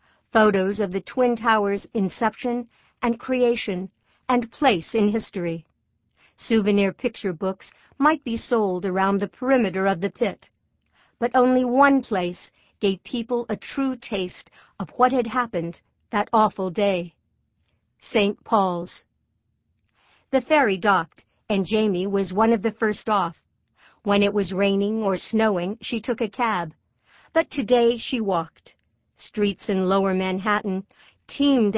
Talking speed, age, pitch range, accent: 135 wpm, 50-69, 190-235 Hz, American